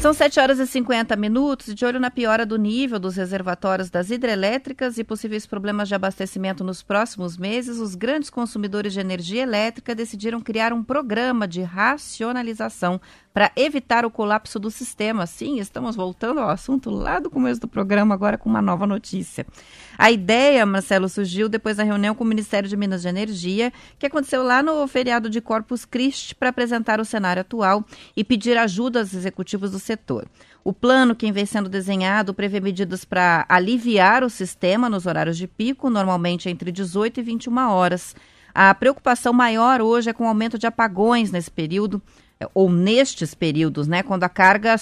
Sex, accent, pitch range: female, Brazilian, 185-235 Hz